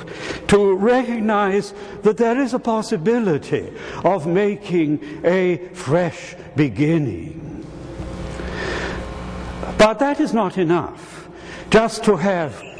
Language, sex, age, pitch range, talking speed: English, male, 70-89, 140-210 Hz, 95 wpm